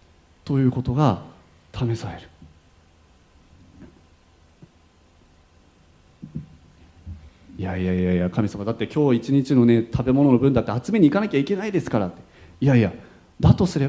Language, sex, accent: Japanese, male, native